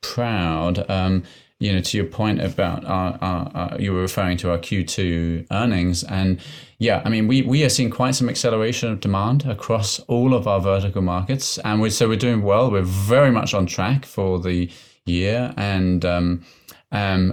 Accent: British